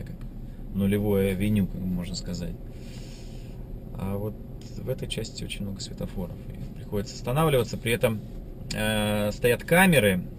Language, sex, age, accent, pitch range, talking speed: Russian, male, 20-39, native, 100-135 Hz, 115 wpm